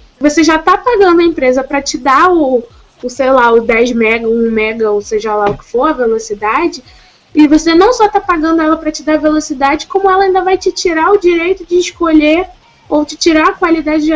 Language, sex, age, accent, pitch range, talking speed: Portuguese, female, 10-29, Brazilian, 255-350 Hz, 230 wpm